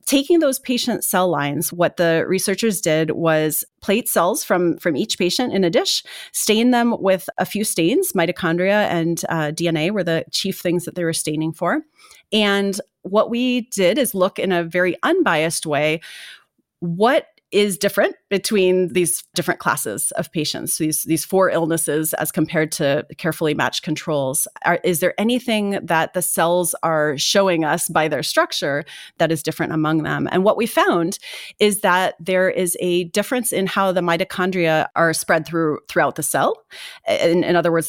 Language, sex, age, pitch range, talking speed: English, female, 30-49, 165-205 Hz, 175 wpm